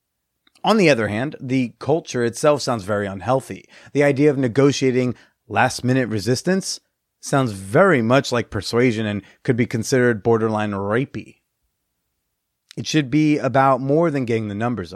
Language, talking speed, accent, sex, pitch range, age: English, 145 wpm, American, male, 115-155 Hz, 30-49